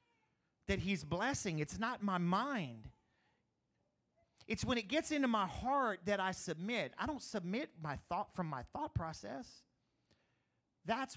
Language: English